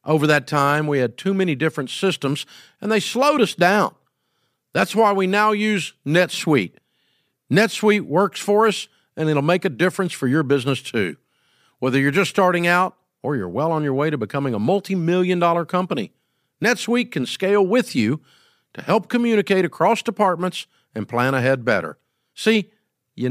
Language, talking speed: English, 170 wpm